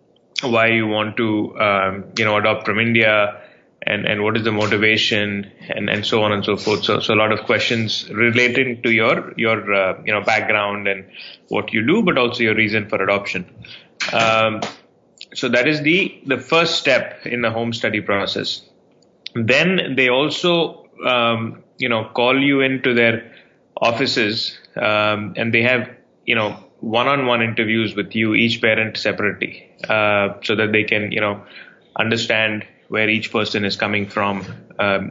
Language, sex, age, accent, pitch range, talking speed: English, male, 20-39, Indian, 105-120 Hz, 170 wpm